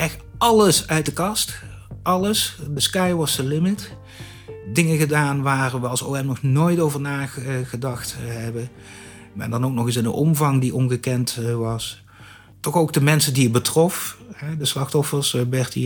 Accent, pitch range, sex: Dutch, 120-145 Hz, male